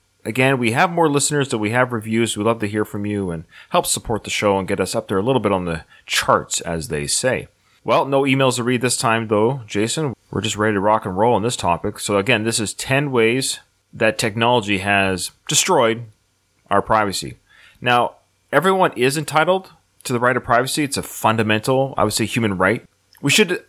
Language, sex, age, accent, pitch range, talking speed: English, male, 30-49, American, 95-125 Hz, 215 wpm